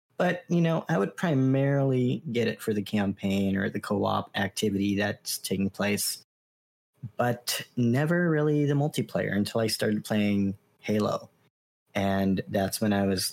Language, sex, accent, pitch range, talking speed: English, male, American, 100-125 Hz, 150 wpm